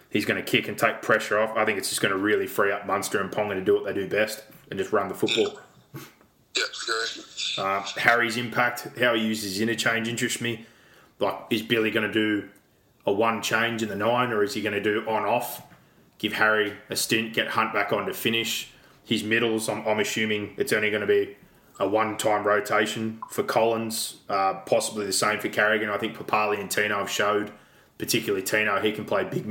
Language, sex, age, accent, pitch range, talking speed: English, male, 20-39, Australian, 105-115 Hz, 210 wpm